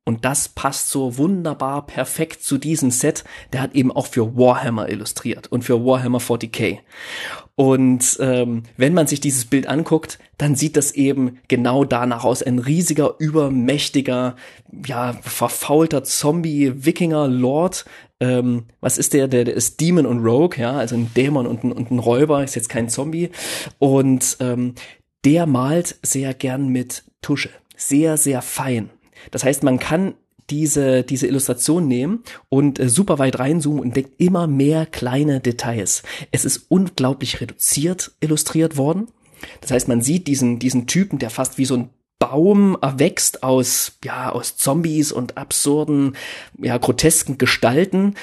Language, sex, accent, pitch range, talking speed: German, male, German, 125-150 Hz, 155 wpm